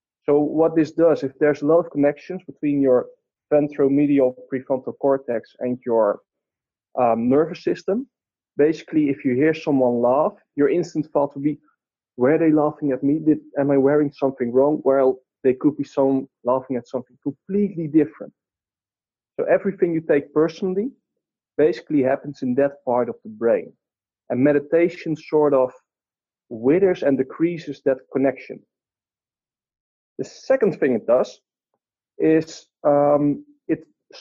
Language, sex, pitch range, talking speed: English, male, 135-160 Hz, 140 wpm